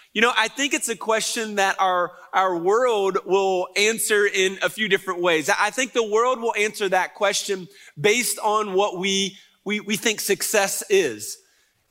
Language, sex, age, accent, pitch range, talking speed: English, male, 30-49, American, 190-230 Hz, 180 wpm